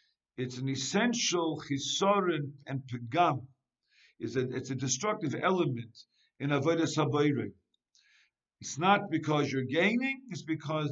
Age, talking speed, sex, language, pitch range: 60-79, 110 wpm, male, English, 140-205 Hz